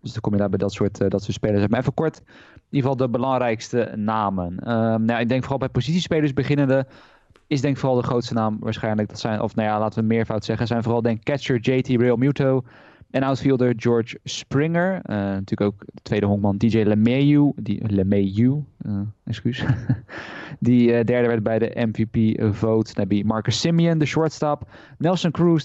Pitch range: 110-135 Hz